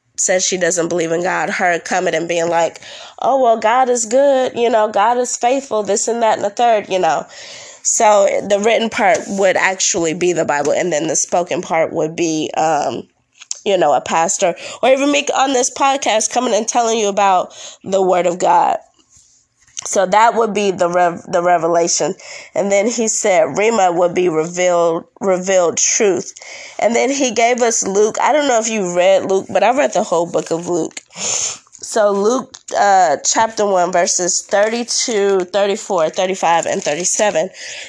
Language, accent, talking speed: English, American, 175 wpm